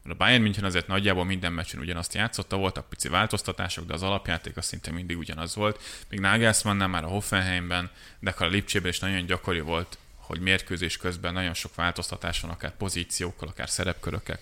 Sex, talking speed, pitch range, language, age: male, 185 wpm, 90-100 Hz, Hungarian, 20-39